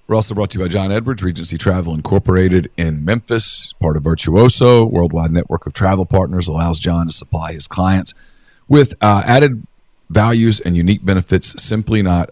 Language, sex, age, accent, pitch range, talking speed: English, male, 40-59, American, 90-110 Hz, 175 wpm